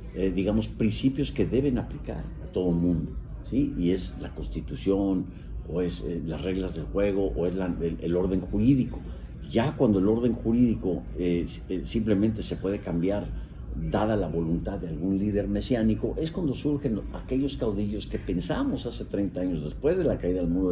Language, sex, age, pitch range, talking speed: Spanish, male, 50-69, 85-105 Hz, 180 wpm